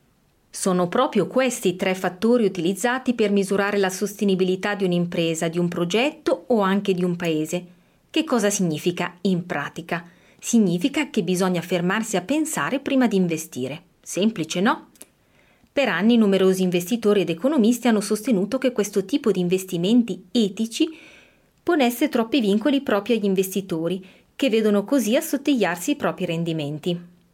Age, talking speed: 30-49, 145 wpm